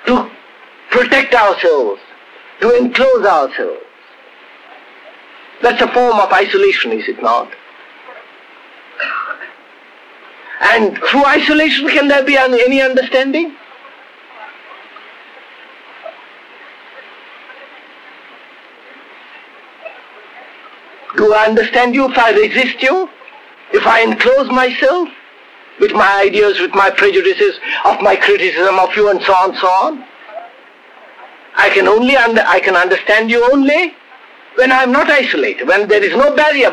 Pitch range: 235-345 Hz